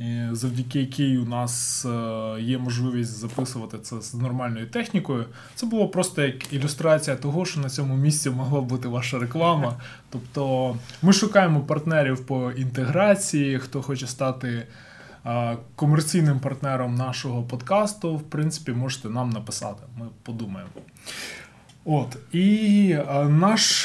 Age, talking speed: 20-39, 120 wpm